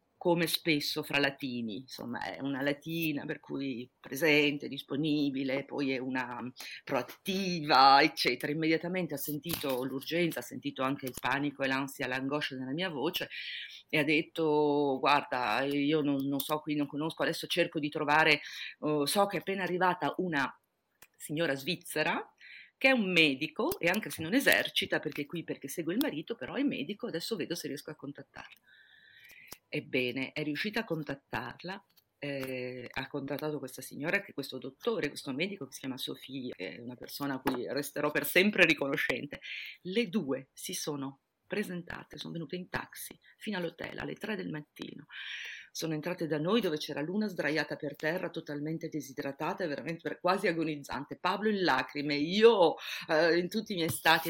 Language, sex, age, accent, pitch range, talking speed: Italian, female, 40-59, native, 140-170 Hz, 165 wpm